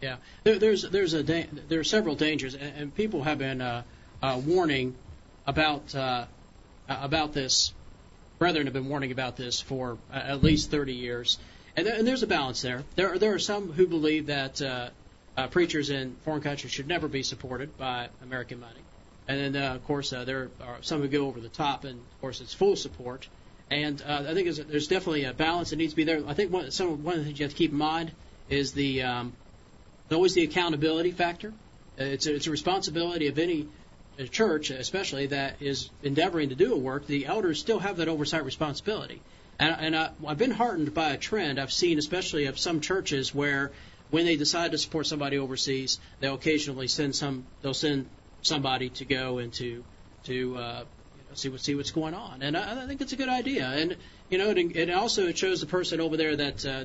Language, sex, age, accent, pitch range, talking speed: English, male, 40-59, American, 130-160 Hz, 215 wpm